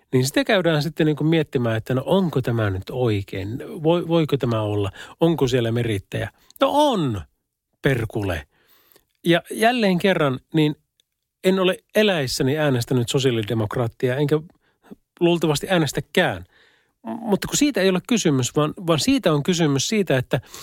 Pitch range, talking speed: 120-165 Hz, 135 wpm